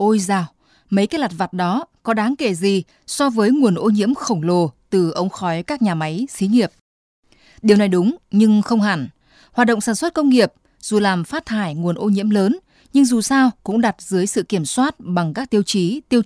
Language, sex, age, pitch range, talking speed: Vietnamese, female, 20-39, 180-240 Hz, 220 wpm